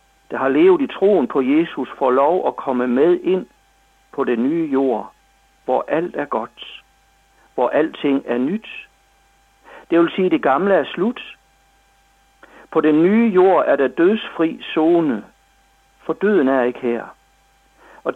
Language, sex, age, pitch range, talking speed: Danish, male, 60-79, 130-200 Hz, 150 wpm